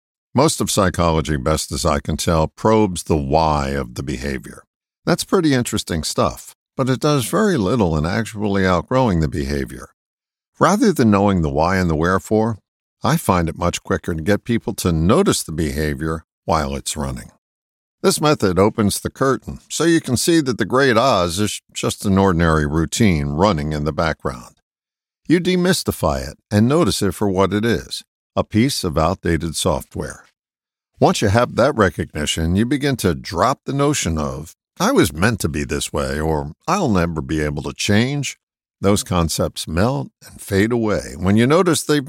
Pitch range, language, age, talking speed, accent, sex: 80-115 Hz, English, 50-69, 175 wpm, American, male